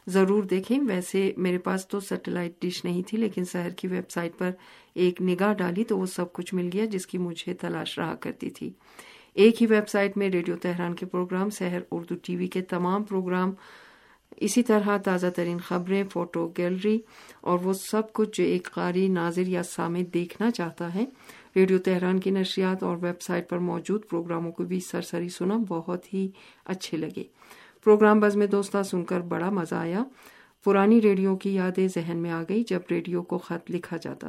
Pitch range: 175-200 Hz